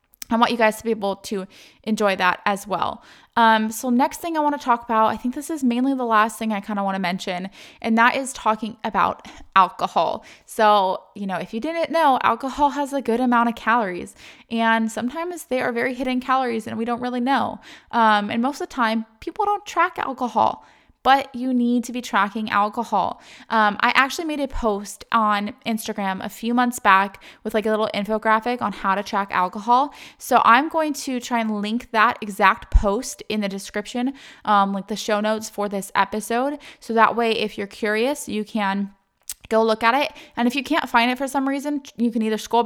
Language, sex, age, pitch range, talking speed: English, female, 20-39, 210-260 Hz, 215 wpm